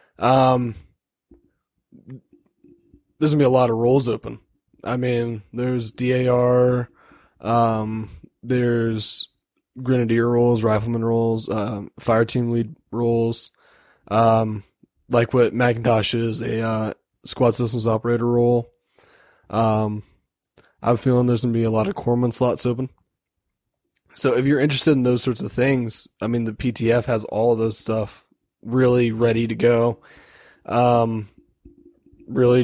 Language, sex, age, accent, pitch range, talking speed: English, male, 20-39, American, 115-130 Hz, 130 wpm